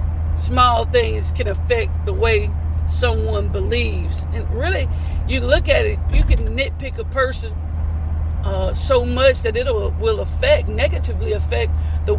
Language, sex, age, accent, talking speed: English, female, 50-69, American, 145 wpm